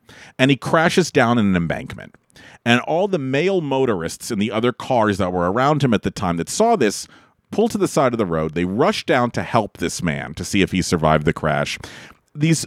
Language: English